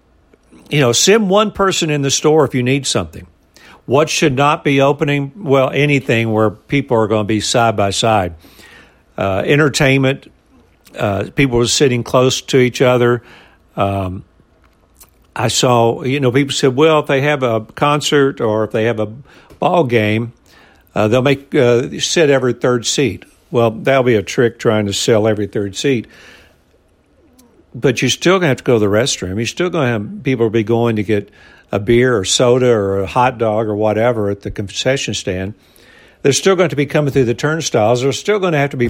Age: 60-79